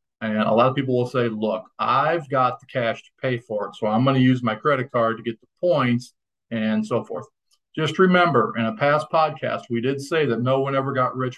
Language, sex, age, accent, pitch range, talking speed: English, male, 40-59, American, 115-140 Hz, 245 wpm